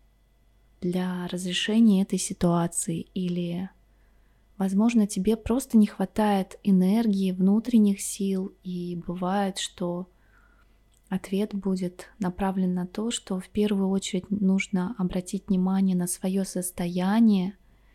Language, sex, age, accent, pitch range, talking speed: Russian, female, 20-39, native, 185-210 Hz, 105 wpm